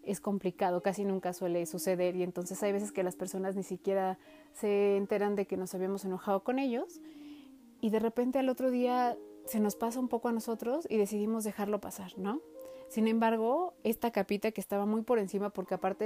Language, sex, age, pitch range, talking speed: Spanish, female, 30-49, 190-220 Hz, 200 wpm